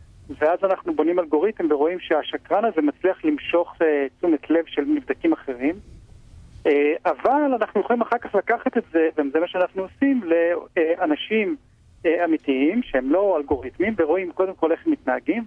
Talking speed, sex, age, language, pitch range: 155 wpm, male, 40-59, Hebrew, 150-215 Hz